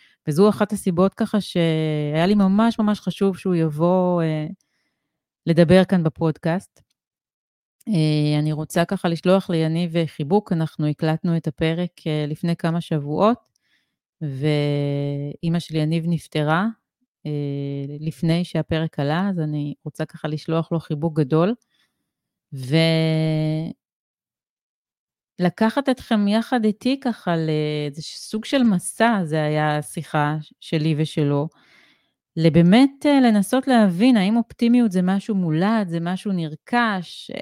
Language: Hebrew